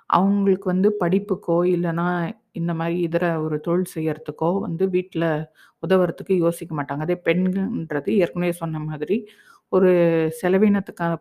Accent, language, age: native, Tamil, 50-69